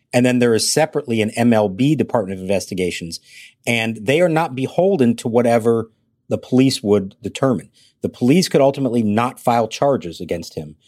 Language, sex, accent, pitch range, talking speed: English, male, American, 105-130 Hz, 165 wpm